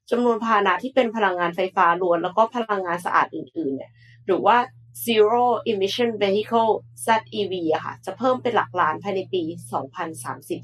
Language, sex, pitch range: Thai, female, 175-230 Hz